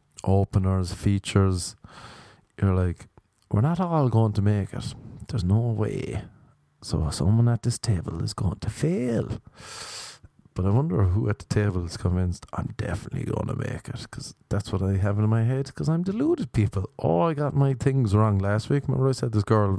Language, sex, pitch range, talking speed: English, male, 95-120 Hz, 190 wpm